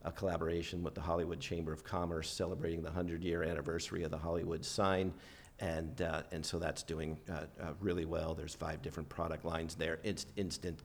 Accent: American